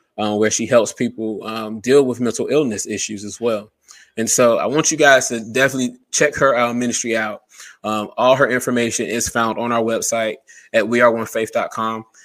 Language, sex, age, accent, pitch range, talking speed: English, male, 20-39, American, 105-125 Hz, 180 wpm